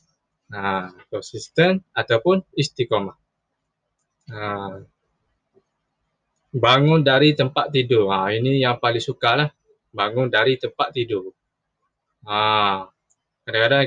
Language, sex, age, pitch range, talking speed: Malay, male, 20-39, 110-145 Hz, 80 wpm